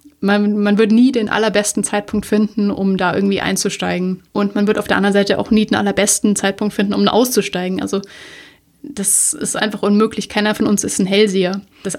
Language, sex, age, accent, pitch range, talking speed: German, female, 30-49, German, 195-225 Hz, 195 wpm